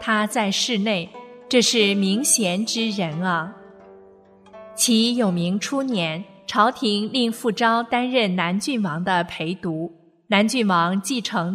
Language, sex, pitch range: Chinese, female, 190-235 Hz